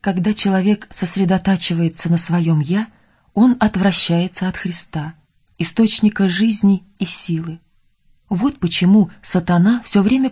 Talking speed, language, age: 110 wpm, Russian, 20-39